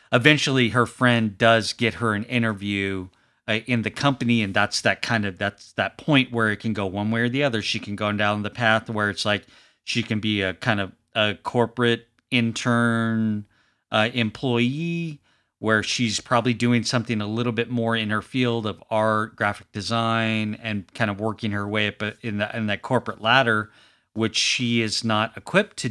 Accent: American